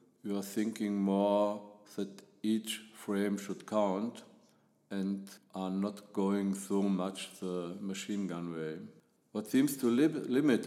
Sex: male